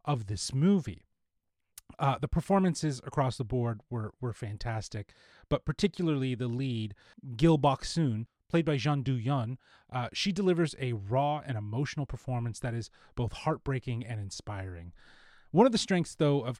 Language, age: English, 30-49